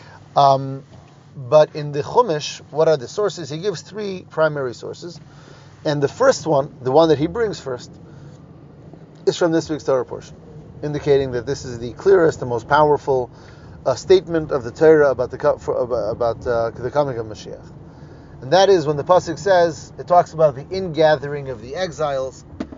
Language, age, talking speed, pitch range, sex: English, 30-49, 180 wpm, 135-170 Hz, male